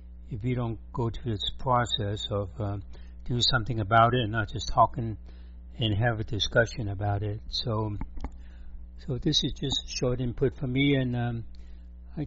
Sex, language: male, English